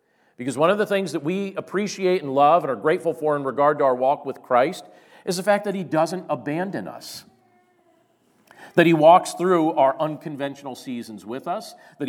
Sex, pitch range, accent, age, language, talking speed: male, 135-180 Hz, American, 40-59, English, 195 wpm